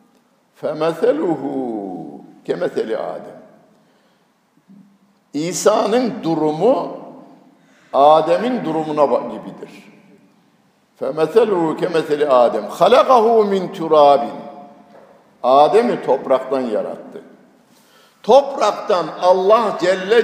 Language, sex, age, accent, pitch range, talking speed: Turkish, male, 60-79, native, 165-240 Hz, 60 wpm